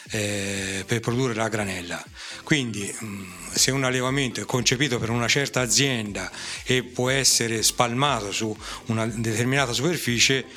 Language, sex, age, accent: Italian, male, 40-59, native